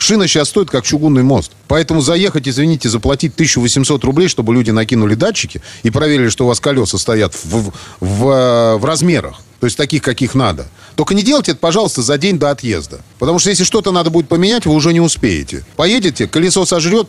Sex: male